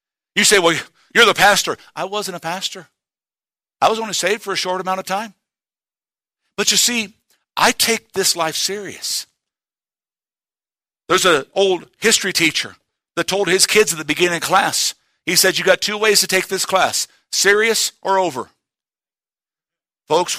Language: English